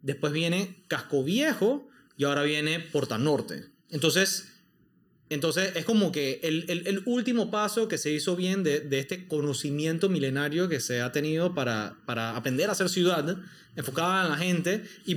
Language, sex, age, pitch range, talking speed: Spanish, male, 30-49, 145-185 Hz, 170 wpm